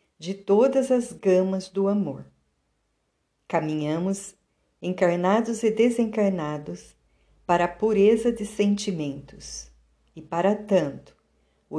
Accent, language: Brazilian, Portuguese